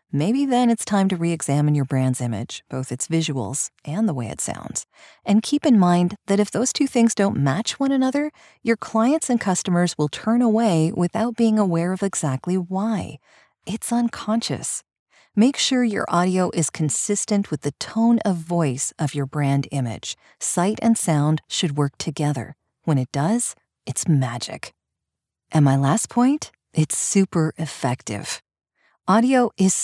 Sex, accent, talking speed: female, American, 160 wpm